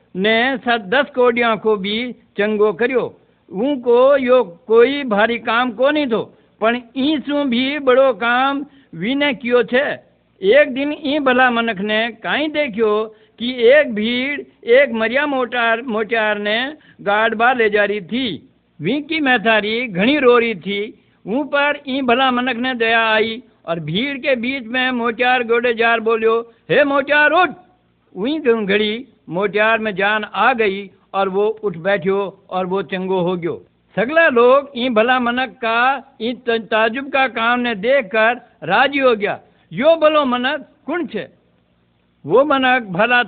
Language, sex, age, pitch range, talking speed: Hindi, male, 60-79, 215-265 Hz, 140 wpm